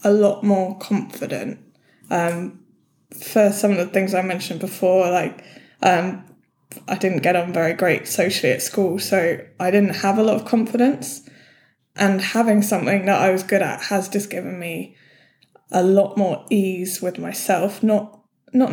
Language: English